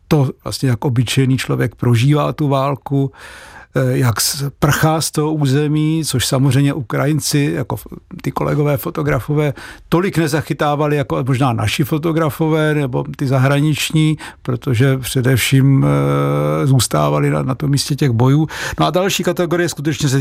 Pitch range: 125-150 Hz